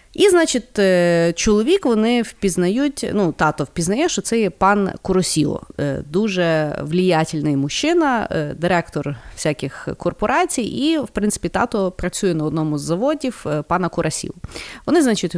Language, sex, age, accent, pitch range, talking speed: Ukrainian, female, 30-49, native, 155-210 Hz, 125 wpm